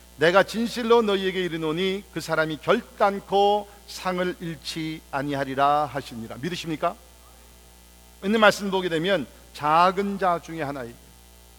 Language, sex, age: Korean, male, 50-69